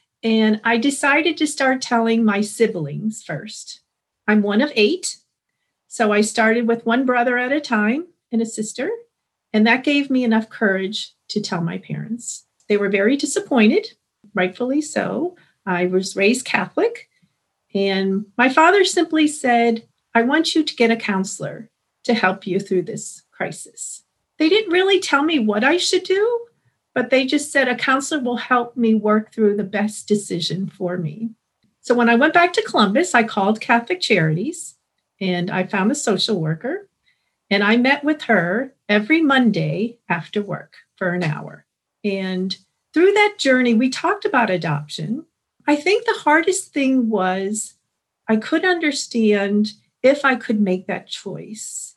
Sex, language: female, English